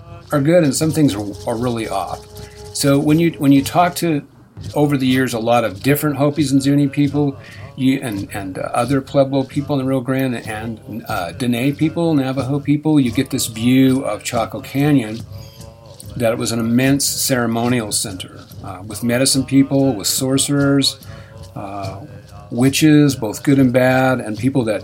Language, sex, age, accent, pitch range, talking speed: English, male, 50-69, American, 105-135 Hz, 175 wpm